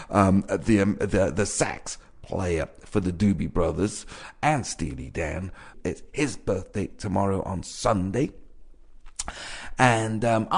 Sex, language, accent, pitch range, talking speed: male, English, British, 90-110 Hz, 125 wpm